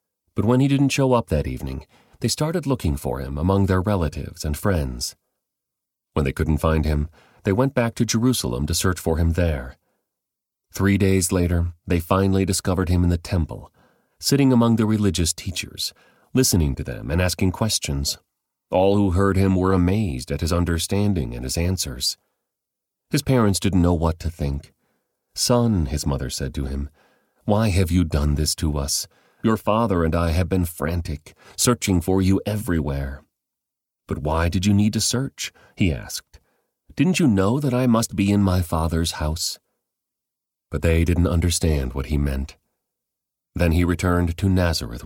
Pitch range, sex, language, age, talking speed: 75-100 Hz, male, English, 40-59, 170 wpm